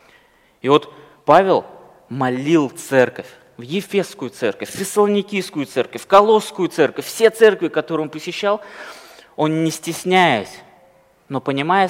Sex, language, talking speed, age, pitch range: male, Russian, 120 wpm, 20-39, 125-165 Hz